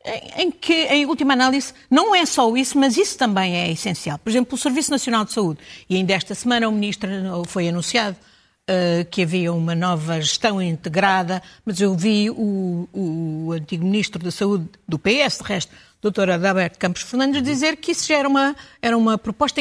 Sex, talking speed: female, 195 wpm